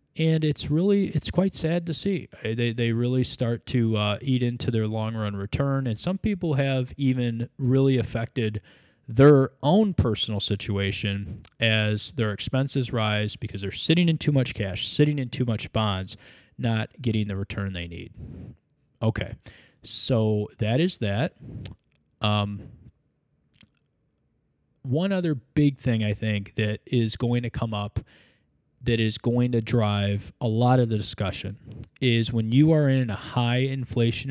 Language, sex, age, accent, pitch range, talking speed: English, male, 20-39, American, 110-135 Hz, 155 wpm